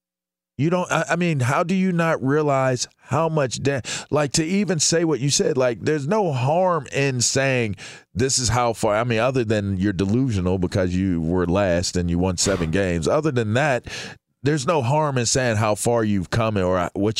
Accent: American